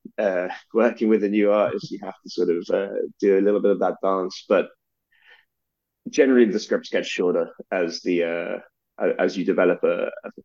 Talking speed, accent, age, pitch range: 190 wpm, British, 20-39, 90-105 Hz